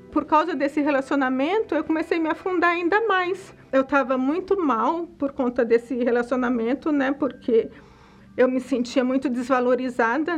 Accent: Brazilian